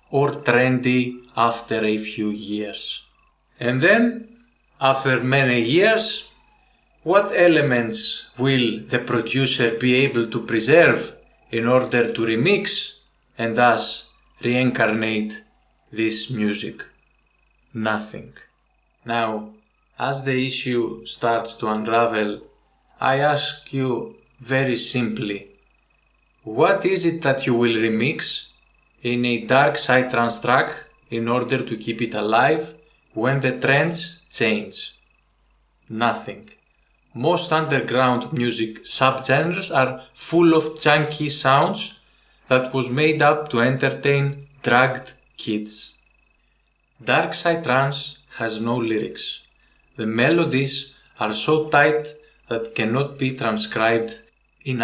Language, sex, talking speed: English, male, 110 wpm